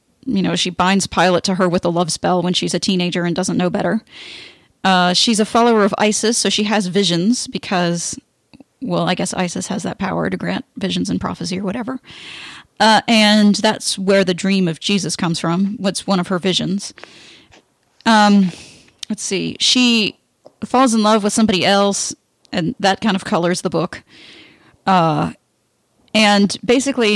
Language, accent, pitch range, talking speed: English, American, 180-220 Hz, 175 wpm